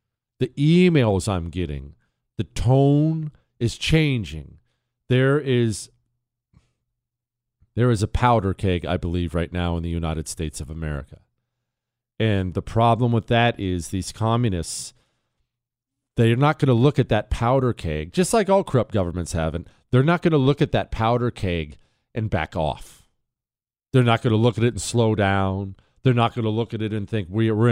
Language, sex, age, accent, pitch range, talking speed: English, male, 40-59, American, 105-130 Hz, 175 wpm